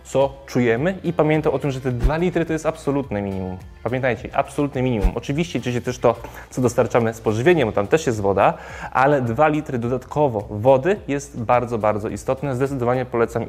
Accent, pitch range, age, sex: native, 110-150 Hz, 20-39, male